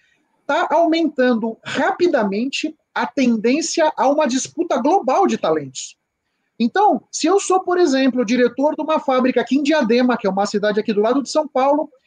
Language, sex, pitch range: Portuguese, male, 235-320 Hz